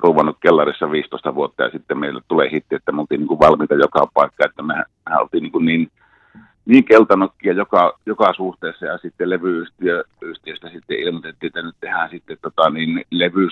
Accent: native